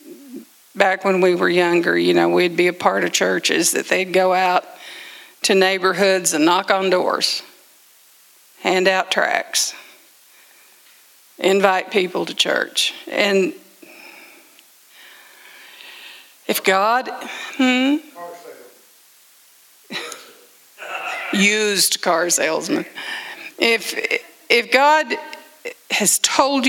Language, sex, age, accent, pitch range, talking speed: English, female, 50-69, American, 185-300 Hz, 95 wpm